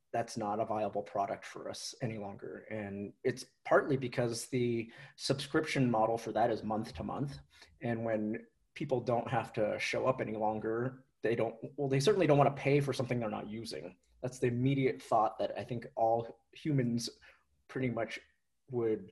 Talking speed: 180 wpm